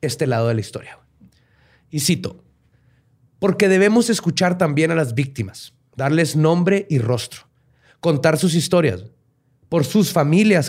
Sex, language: male, Spanish